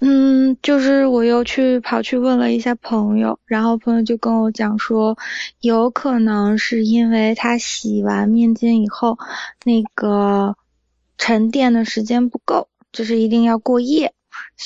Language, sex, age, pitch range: Chinese, female, 20-39, 210-245 Hz